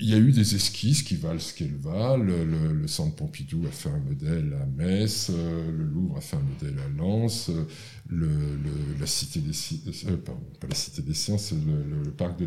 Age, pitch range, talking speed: 50-69, 95-135 Hz, 180 wpm